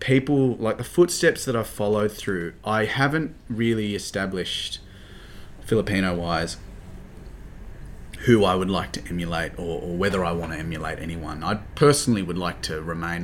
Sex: male